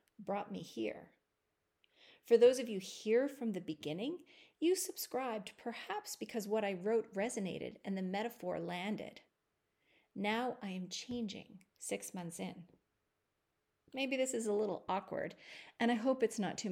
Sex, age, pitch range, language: female, 40-59, 190-250 Hz, English